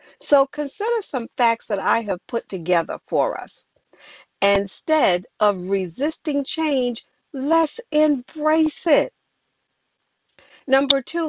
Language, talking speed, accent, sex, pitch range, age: English, 105 wpm, American, female, 215-280 Hz, 50-69